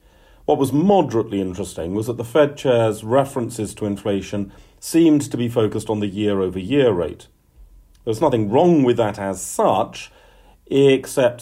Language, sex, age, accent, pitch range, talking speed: English, male, 40-59, British, 95-130 Hz, 145 wpm